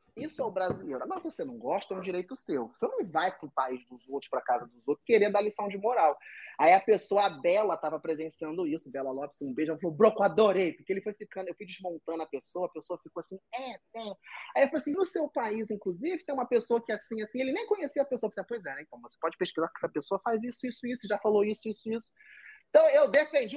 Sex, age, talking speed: male, 20-39, 265 wpm